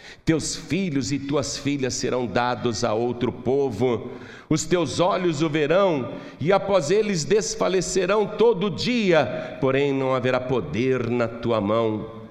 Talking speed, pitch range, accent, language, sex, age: 135 wpm, 125-170 Hz, Brazilian, Portuguese, male, 60-79